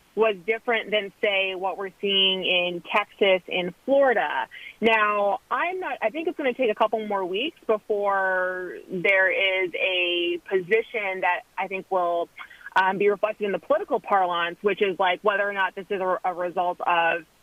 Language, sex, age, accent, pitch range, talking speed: English, female, 30-49, American, 190-250 Hz, 180 wpm